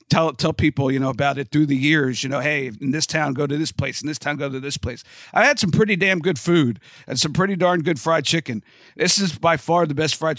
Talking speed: 275 wpm